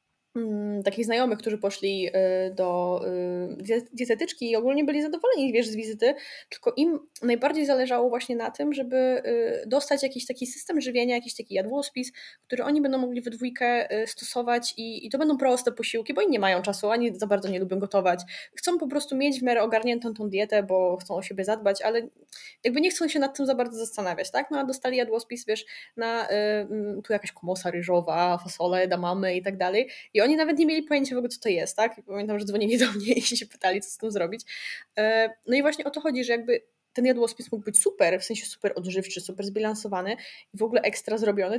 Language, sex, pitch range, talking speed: Polish, female, 200-250 Hz, 215 wpm